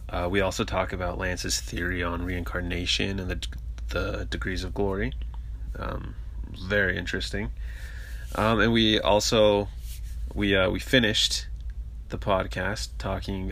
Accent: American